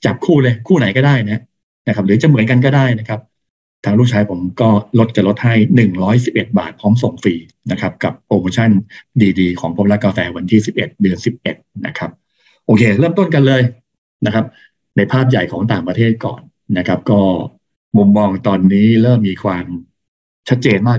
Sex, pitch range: male, 100-125 Hz